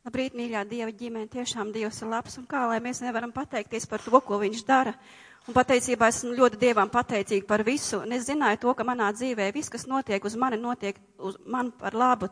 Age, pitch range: 30-49, 220-265 Hz